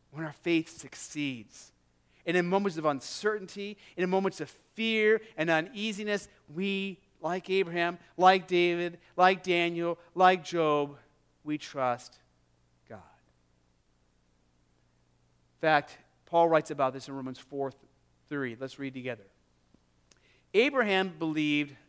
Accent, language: American, English